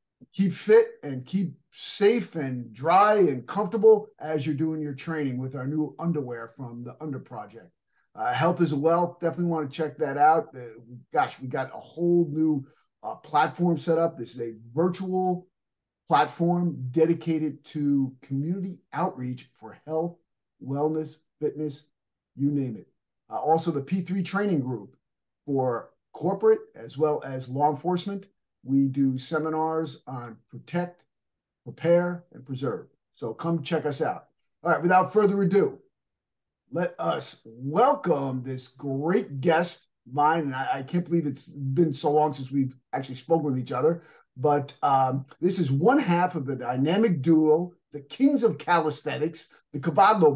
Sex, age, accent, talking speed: male, 50-69, American, 155 wpm